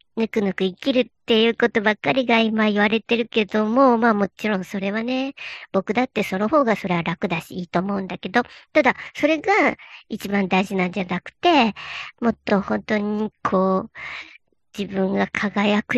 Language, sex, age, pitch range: Japanese, male, 50-69, 200-265 Hz